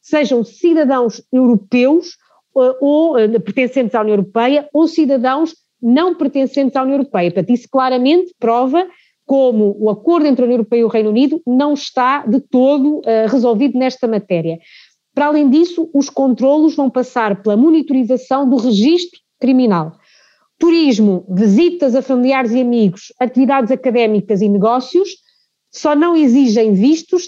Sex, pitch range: female, 230-295 Hz